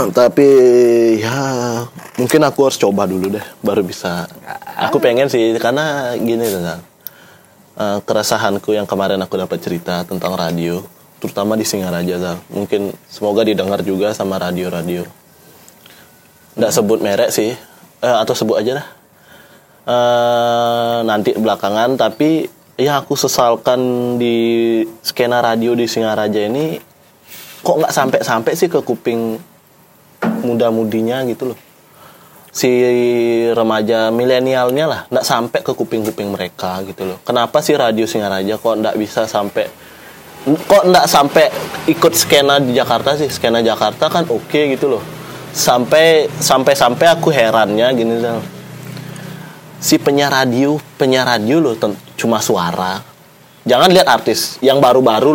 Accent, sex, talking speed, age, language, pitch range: native, male, 130 wpm, 20-39, Indonesian, 110-135 Hz